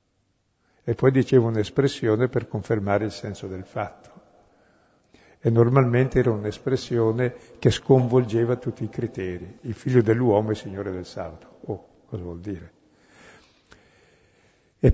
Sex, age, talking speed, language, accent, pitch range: male, 60-79, 130 wpm, Italian, native, 105-125 Hz